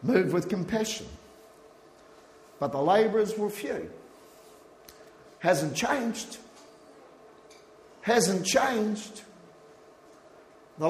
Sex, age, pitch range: male, 50-69, 180-225 Hz